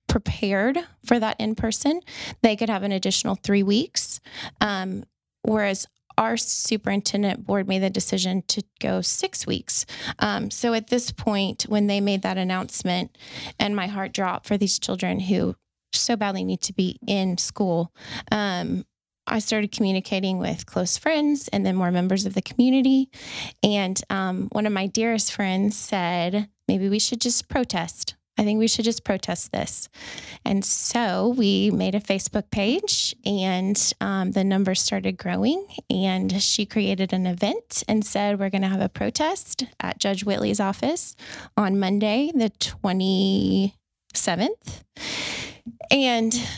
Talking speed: 150 wpm